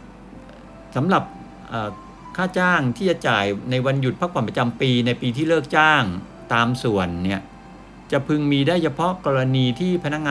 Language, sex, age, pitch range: Thai, male, 60-79, 115-150 Hz